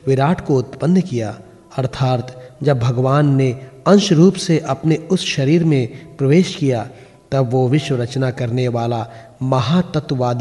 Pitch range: 130-160 Hz